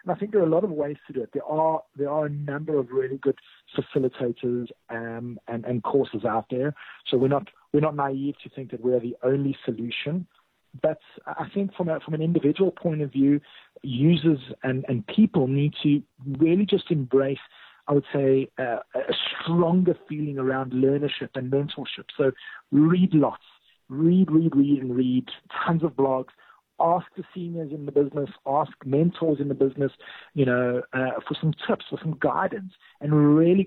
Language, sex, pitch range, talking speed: English, male, 135-170 Hz, 185 wpm